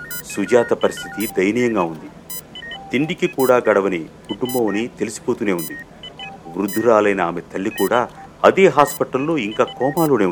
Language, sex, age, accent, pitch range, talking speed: Telugu, male, 50-69, native, 95-150 Hz, 105 wpm